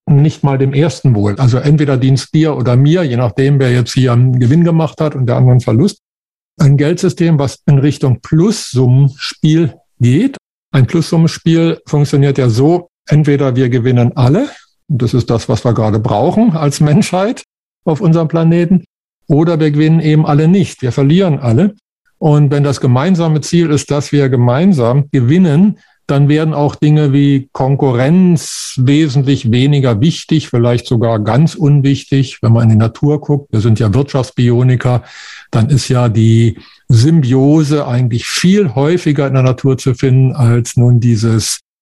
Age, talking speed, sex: 50-69, 160 wpm, male